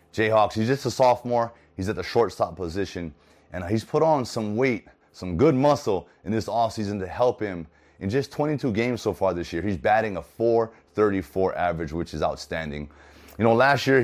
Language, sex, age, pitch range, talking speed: English, male, 30-49, 85-115 Hz, 190 wpm